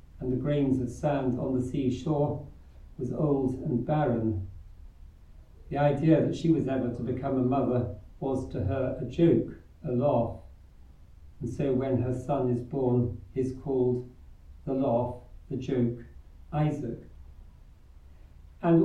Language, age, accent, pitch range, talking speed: English, 50-69, British, 90-140 Hz, 145 wpm